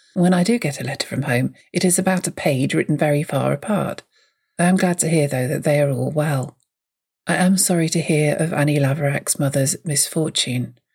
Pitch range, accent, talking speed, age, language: 145-185 Hz, British, 210 wpm, 40-59, English